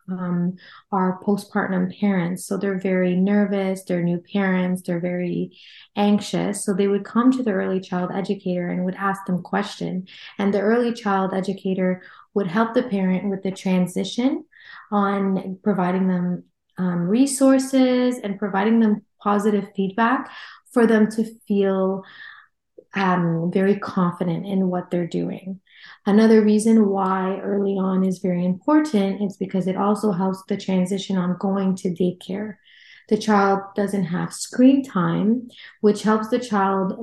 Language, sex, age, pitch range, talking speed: English, female, 20-39, 185-205 Hz, 145 wpm